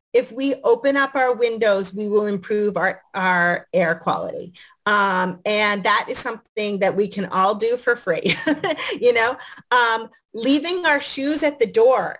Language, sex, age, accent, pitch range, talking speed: English, female, 40-59, American, 200-265 Hz, 165 wpm